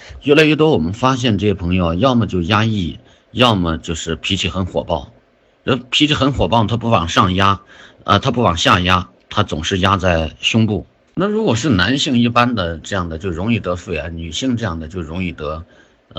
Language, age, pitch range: Chinese, 50-69, 85-115 Hz